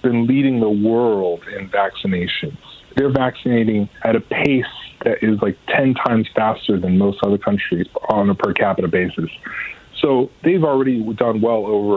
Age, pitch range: 40-59, 105-130 Hz